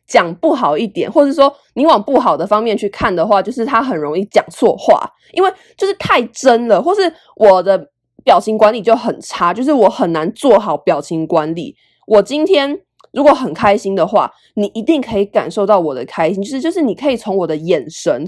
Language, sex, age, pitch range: Chinese, female, 20-39, 195-285 Hz